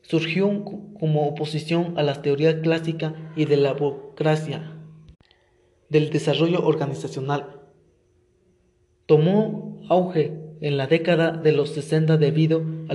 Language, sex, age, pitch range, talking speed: Spanish, male, 20-39, 150-165 Hz, 110 wpm